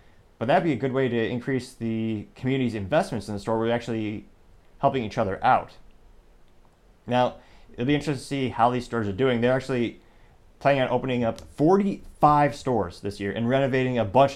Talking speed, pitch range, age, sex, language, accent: 190 wpm, 105-130 Hz, 30-49, male, English, American